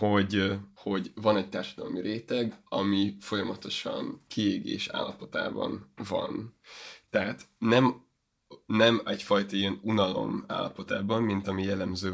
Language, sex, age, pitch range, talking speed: Hungarian, male, 20-39, 95-110 Hz, 105 wpm